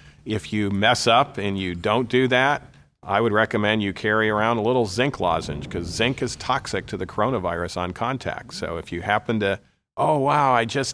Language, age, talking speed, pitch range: English, 40-59, 205 wpm, 100-130 Hz